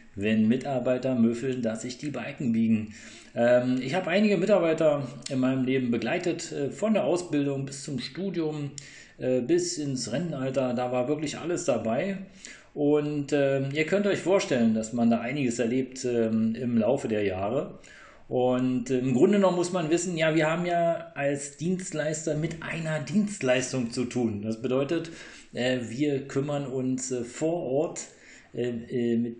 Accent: German